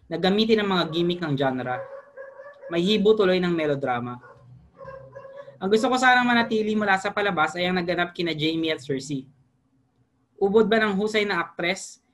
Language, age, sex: Filipino, 20-39, female